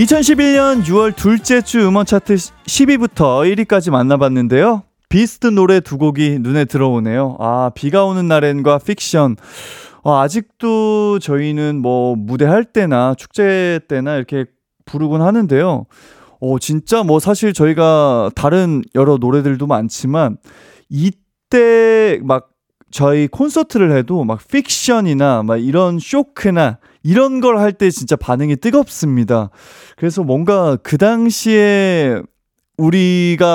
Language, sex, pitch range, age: Korean, male, 130-205 Hz, 20-39